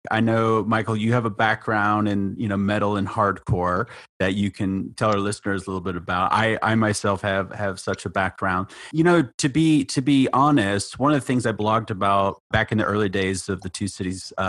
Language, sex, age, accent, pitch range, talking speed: English, male, 30-49, American, 95-110 Hz, 225 wpm